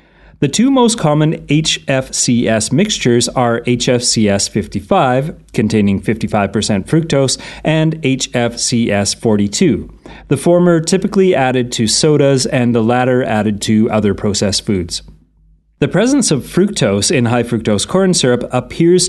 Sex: male